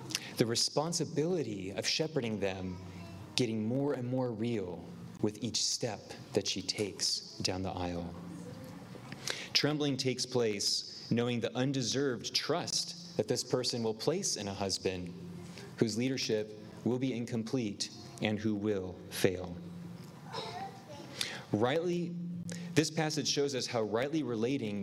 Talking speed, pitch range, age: 125 wpm, 100-145 Hz, 30-49